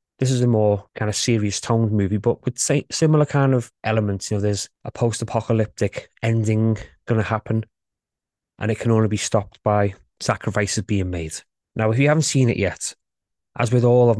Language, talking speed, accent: English, 190 wpm, British